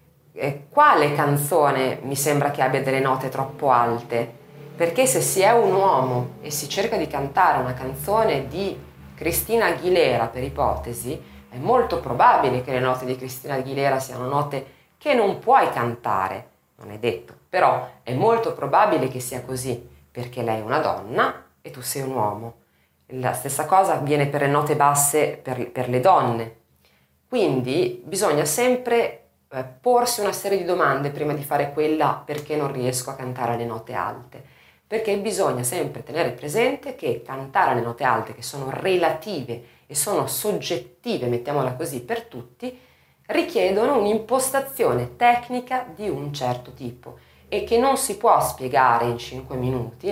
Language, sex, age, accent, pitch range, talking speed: Italian, female, 30-49, native, 125-170 Hz, 160 wpm